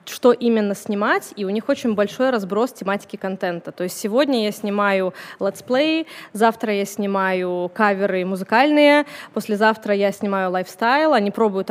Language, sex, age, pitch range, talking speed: Russian, female, 20-39, 195-240 Hz, 145 wpm